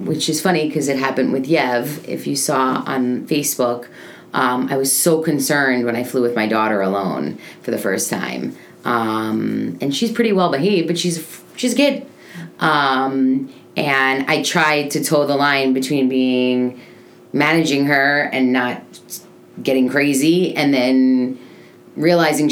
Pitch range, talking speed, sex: 130-170 Hz, 155 wpm, female